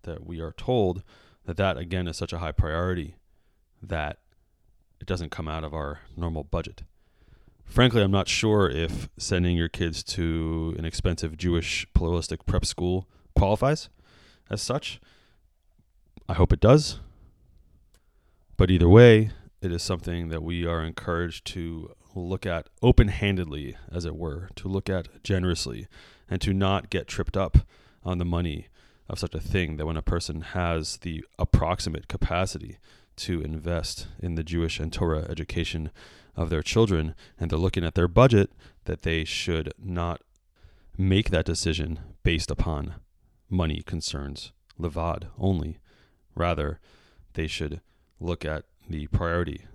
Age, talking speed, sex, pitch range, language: 30-49, 145 wpm, male, 80-95 Hz, English